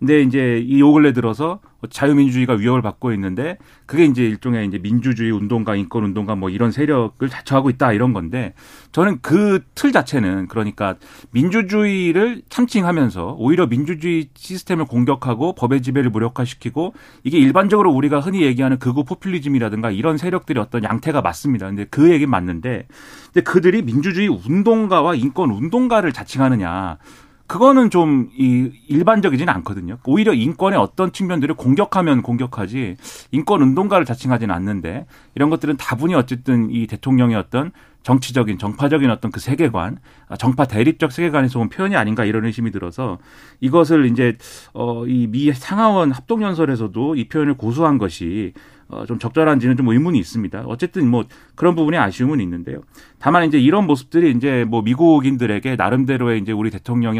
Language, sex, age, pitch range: Korean, male, 40-59, 115-160 Hz